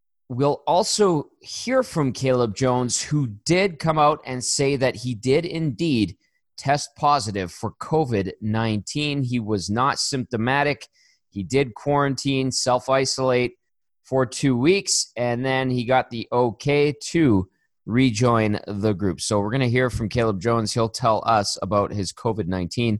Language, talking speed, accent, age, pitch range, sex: English, 145 wpm, American, 30-49, 105-140 Hz, male